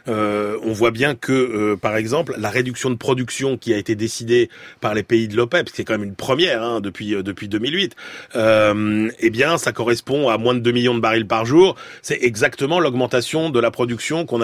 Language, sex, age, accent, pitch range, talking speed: French, male, 30-49, French, 115-140 Hz, 225 wpm